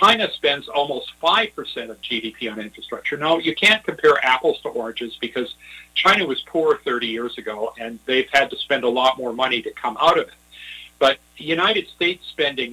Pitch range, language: 110-155 Hz, English